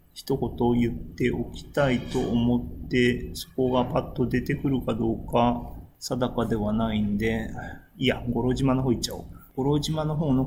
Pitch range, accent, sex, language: 115-145 Hz, native, male, Japanese